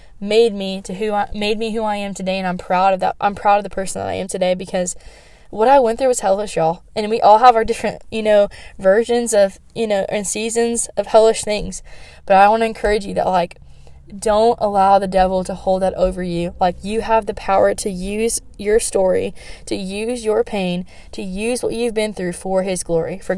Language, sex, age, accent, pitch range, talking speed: English, female, 10-29, American, 185-225 Hz, 230 wpm